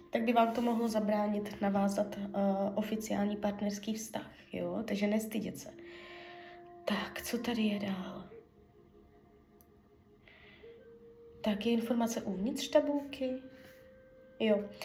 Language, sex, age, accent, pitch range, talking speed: Czech, female, 20-39, native, 205-255 Hz, 95 wpm